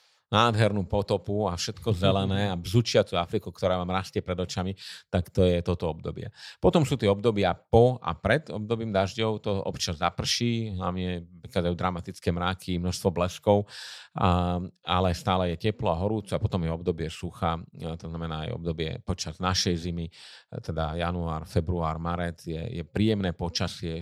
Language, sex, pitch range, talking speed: Slovak, male, 85-95 Hz, 165 wpm